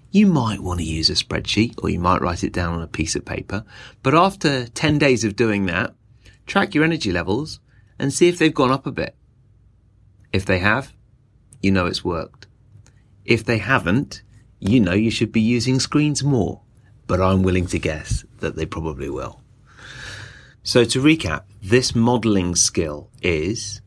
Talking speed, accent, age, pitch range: 180 wpm, British, 30-49, 95-125 Hz